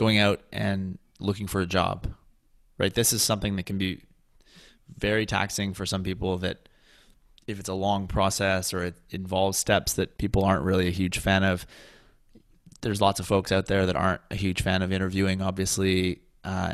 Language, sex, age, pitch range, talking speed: English, male, 20-39, 95-105 Hz, 185 wpm